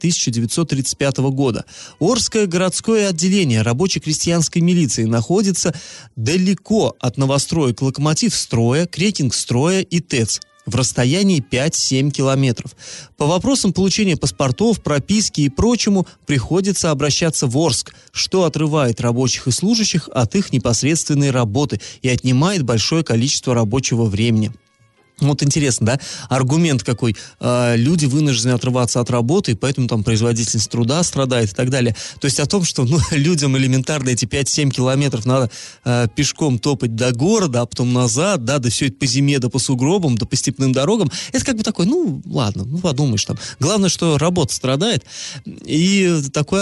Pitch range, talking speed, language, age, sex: 125-170 Hz, 150 wpm, Russian, 30-49, male